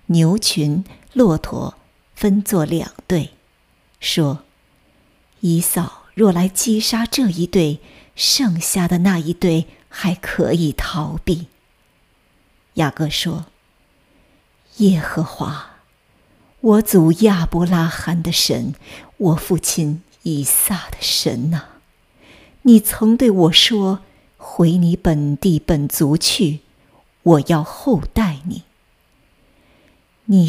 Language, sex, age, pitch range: Chinese, female, 50-69, 160-205 Hz